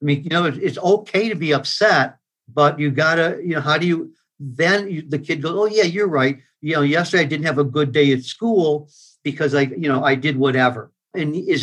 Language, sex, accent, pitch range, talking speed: English, male, American, 135-160 Hz, 245 wpm